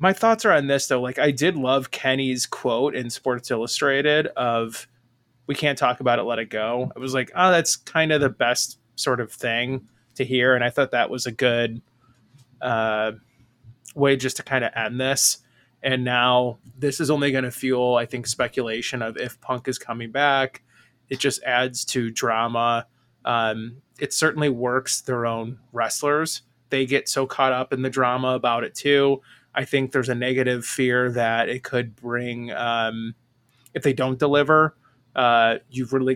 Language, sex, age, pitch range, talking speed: English, male, 20-39, 120-135 Hz, 185 wpm